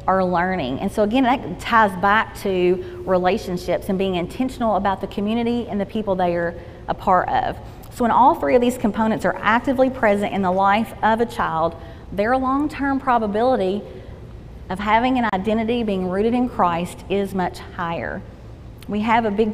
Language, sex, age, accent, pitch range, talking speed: English, female, 30-49, American, 185-225 Hz, 180 wpm